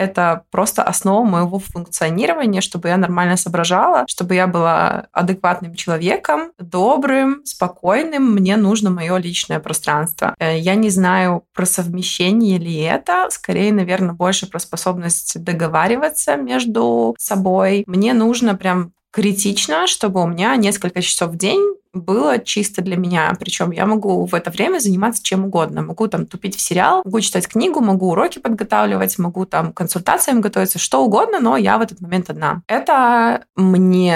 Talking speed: 150 wpm